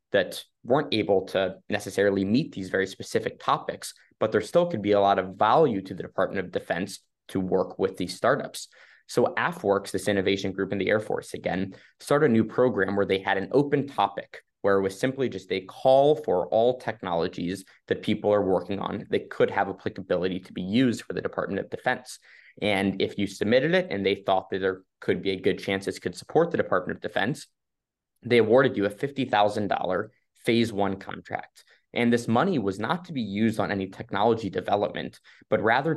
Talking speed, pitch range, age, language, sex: 200 wpm, 95-115 Hz, 20-39, English, male